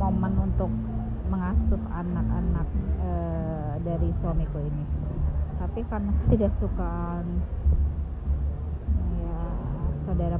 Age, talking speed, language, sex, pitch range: 30-49, 80 wpm, Indonesian, female, 70-85 Hz